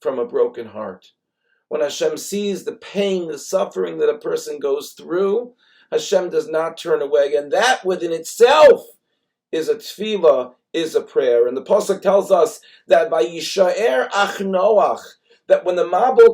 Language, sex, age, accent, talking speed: English, male, 40-59, American, 150 wpm